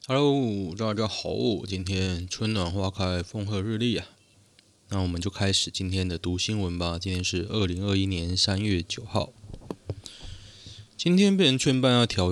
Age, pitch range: 20-39, 90-105 Hz